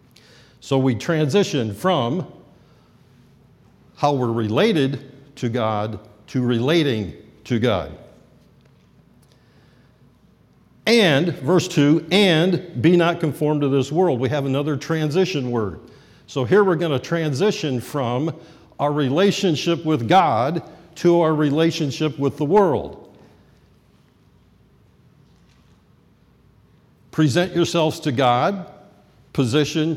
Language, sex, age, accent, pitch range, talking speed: English, male, 50-69, American, 130-165 Hz, 100 wpm